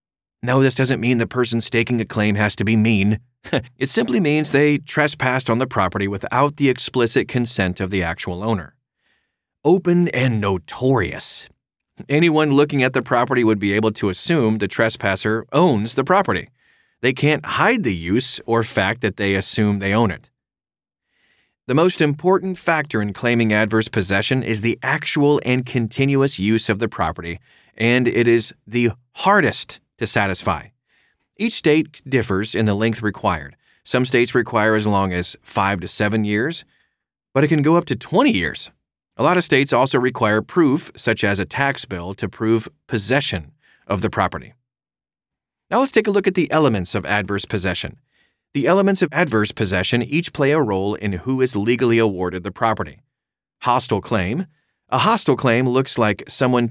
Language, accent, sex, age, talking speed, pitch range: English, American, male, 30-49, 170 wpm, 105-135 Hz